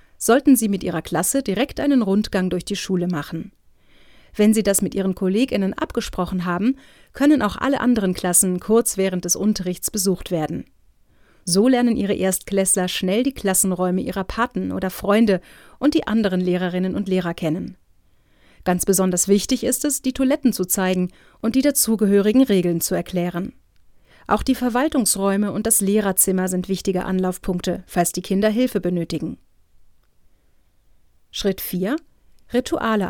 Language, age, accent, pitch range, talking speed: German, 40-59, German, 180-235 Hz, 145 wpm